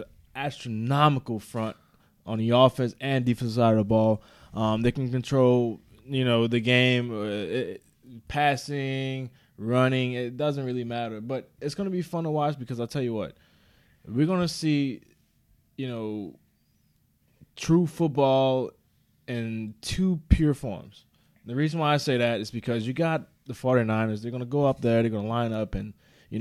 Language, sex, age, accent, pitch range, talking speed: English, male, 20-39, American, 115-140 Hz, 175 wpm